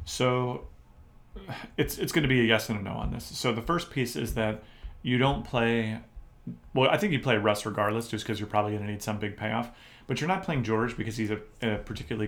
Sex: male